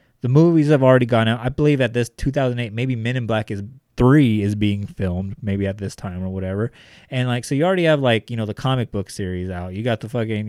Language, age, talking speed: English, 20-39, 250 wpm